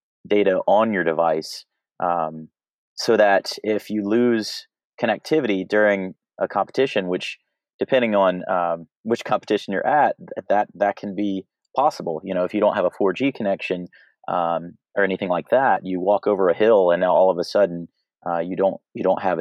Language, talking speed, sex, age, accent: English, 180 wpm, male, 30-49, American